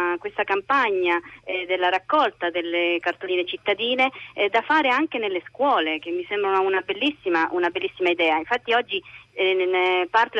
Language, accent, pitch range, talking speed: Italian, native, 180-260 Hz, 150 wpm